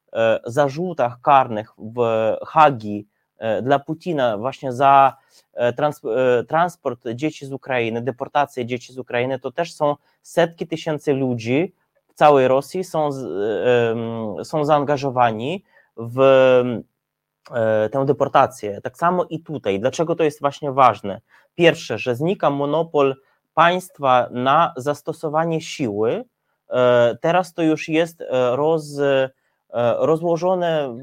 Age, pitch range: 20-39, 130-165 Hz